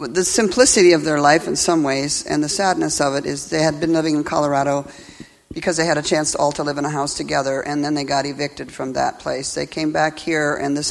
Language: English